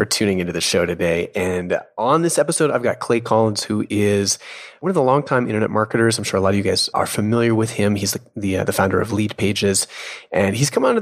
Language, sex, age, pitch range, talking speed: English, male, 30-49, 100-125 Hz, 250 wpm